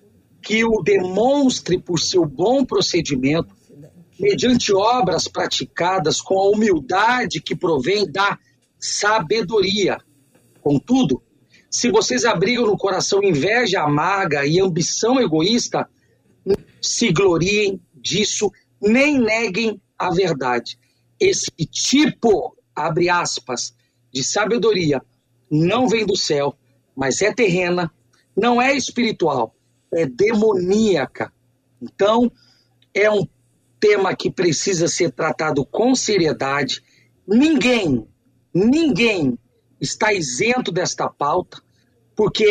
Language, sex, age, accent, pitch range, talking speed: Portuguese, male, 50-69, Brazilian, 140-220 Hz, 100 wpm